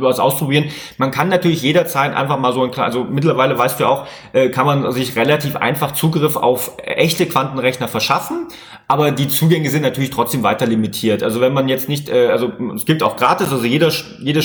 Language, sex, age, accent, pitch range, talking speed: German, male, 30-49, German, 125-155 Hz, 195 wpm